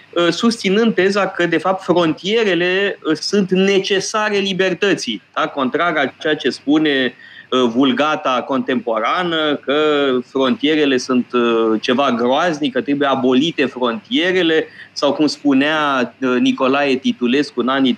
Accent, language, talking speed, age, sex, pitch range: native, Romanian, 105 wpm, 20-39, male, 130-185 Hz